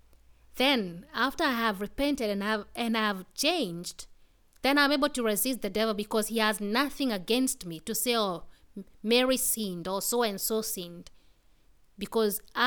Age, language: 20-39, English